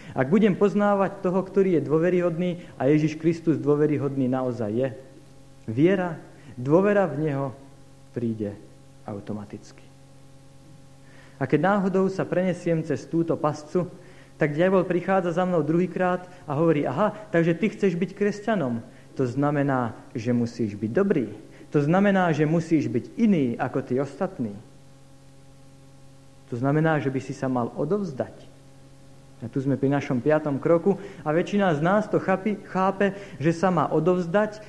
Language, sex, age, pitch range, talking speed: Slovak, male, 50-69, 135-170 Hz, 140 wpm